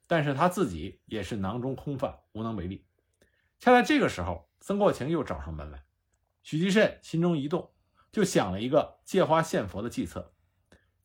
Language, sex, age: Chinese, male, 50-69